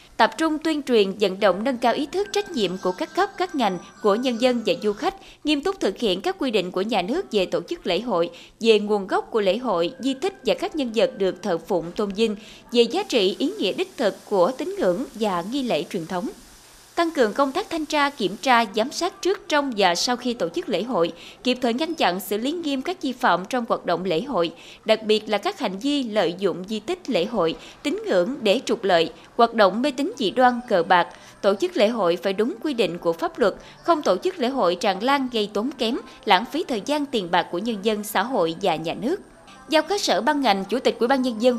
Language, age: Vietnamese, 20-39